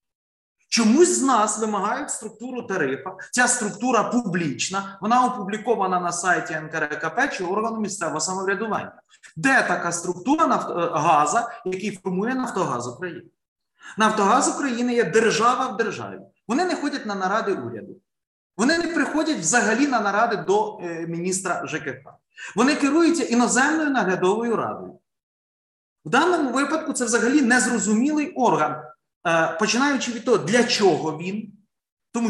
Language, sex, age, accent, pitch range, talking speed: Ukrainian, male, 30-49, native, 190-245 Hz, 125 wpm